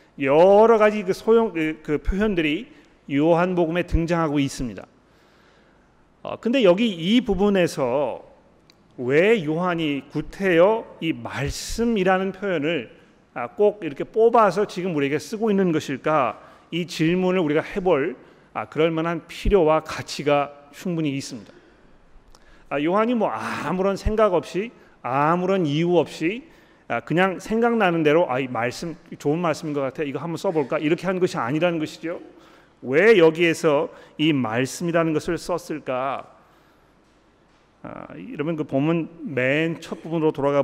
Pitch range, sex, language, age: 145-185 Hz, male, Korean, 40-59